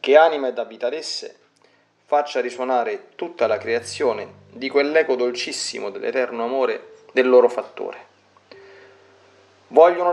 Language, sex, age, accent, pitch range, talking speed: Italian, male, 40-59, native, 120-170 Hz, 115 wpm